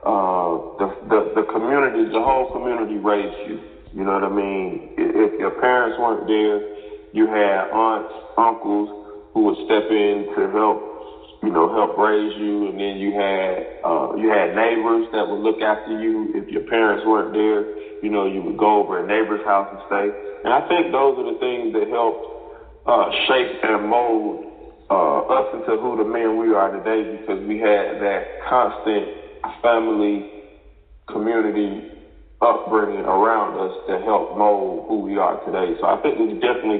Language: English